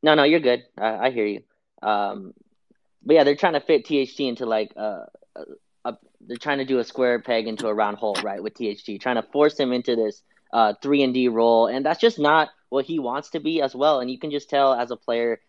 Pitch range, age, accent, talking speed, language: 115-145 Hz, 20-39, American, 240 wpm, English